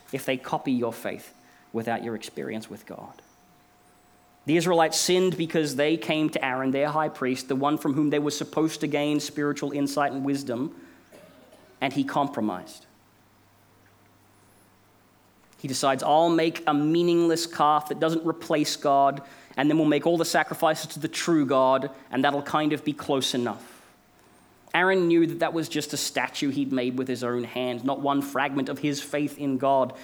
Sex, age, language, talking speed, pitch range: male, 30-49, English, 175 wpm, 125-155 Hz